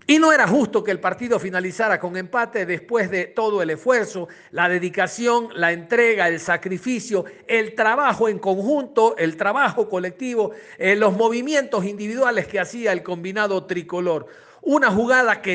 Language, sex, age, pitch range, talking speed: Spanish, male, 50-69, 190-250 Hz, 155 wpm